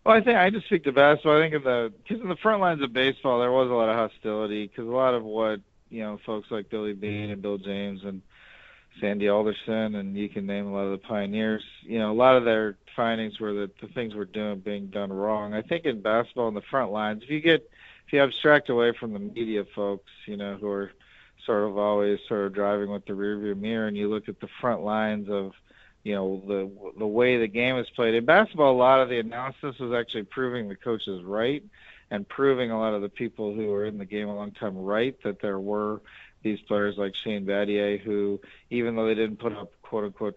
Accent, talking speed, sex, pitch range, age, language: American, 240 wpm, male, 100-120 Hz, 40-59, English